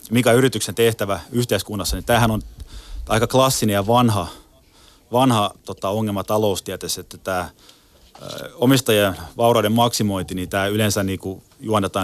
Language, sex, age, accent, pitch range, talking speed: Finnish, male, 30-49, native, 95-115 Hz, 130 wpm